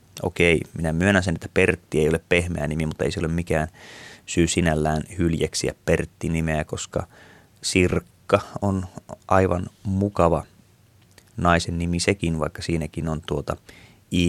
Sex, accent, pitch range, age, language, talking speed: male, native, 85-105 Hz, 30-49, Finnish, 135 wpm